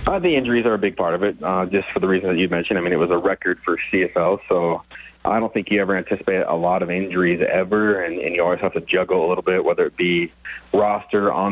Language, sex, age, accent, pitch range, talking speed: English, male, 30-49, American, 90-100 Hz, 270 wpm